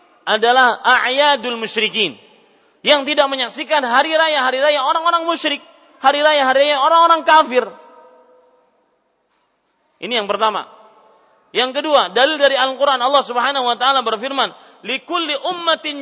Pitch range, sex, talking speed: 235-300 Hz, male, 115 wpm